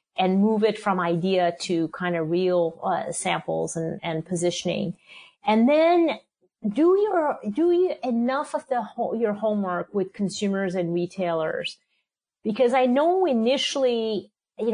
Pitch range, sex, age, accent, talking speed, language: 180-230 Hz, female, 40-59, American, 145 wpm, English